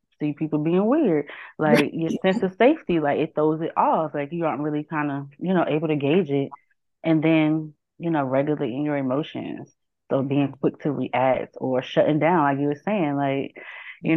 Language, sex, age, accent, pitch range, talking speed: English, female, 20-39, American, 140-170 Hz, 200 wpm